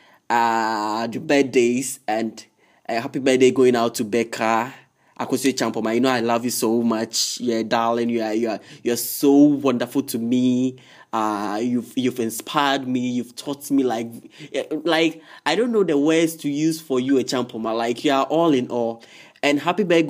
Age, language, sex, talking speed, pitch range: 20-39, English, male, 195 wpm, 115-140 Hz